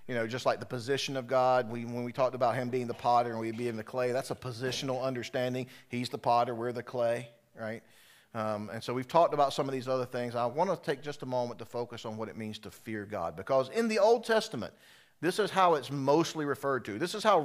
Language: English